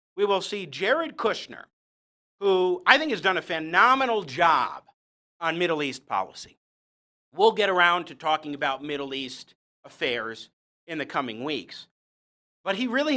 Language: English